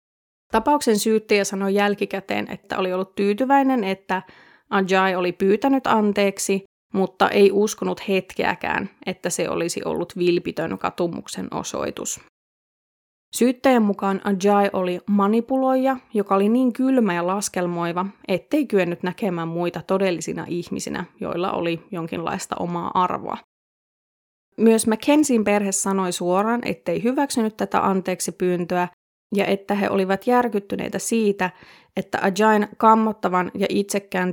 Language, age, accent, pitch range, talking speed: Finnish, 20-39, native, 185-220 Hz, 115 wpm